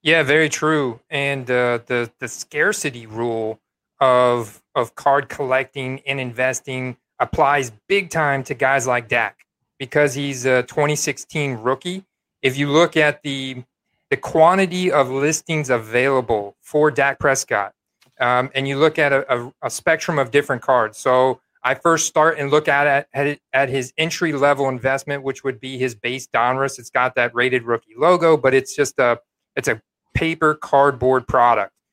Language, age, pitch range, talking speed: English, 30-49, 130-155 Hz, 160 wpm